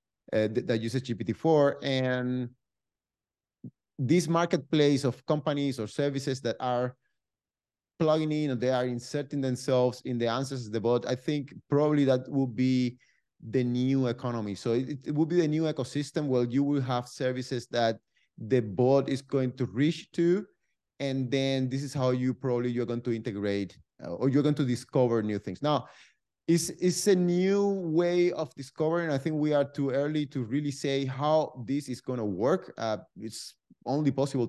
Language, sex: English, male